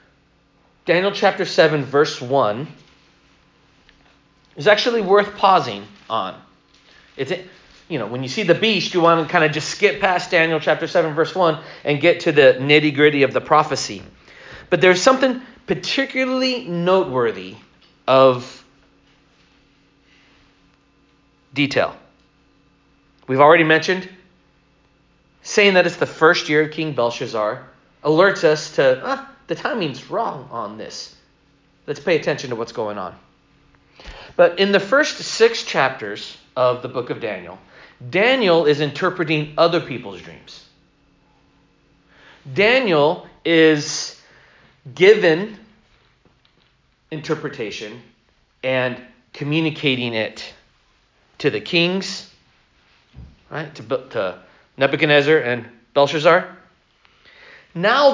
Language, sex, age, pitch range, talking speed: English, male, 40-59, 140-195 Hz, 110 wpm